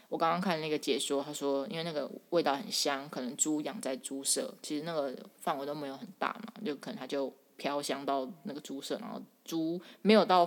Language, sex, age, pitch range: Chinese, female, 20-39, 150-220 Hz